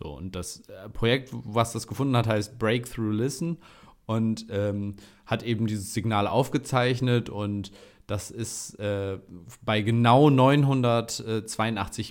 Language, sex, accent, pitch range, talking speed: German, male, German, 105-125 Hz, 120 wpm